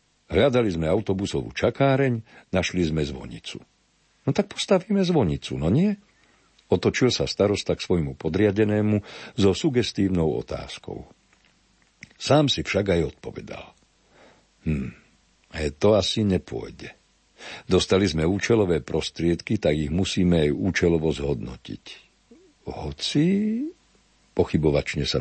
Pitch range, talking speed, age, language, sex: 80-105 Hz, 105 wpm, 60-79, Slovak, male